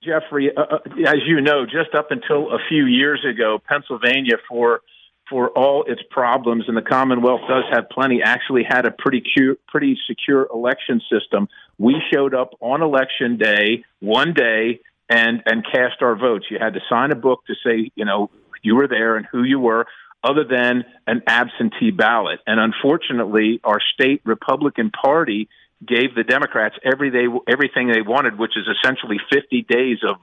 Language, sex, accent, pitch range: English, male, American, 115-135 Hz